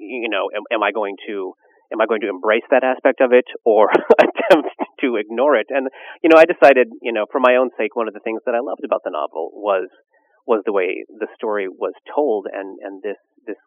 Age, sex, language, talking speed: 30-49, male, English, 235 wpm